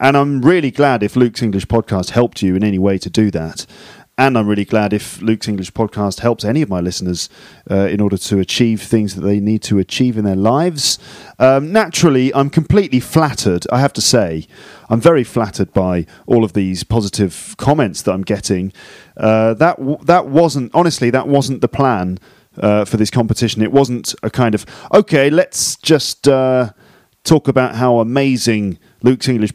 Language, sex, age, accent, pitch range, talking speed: English, male, 40-59, British, 95-130 Hz, 190 wpm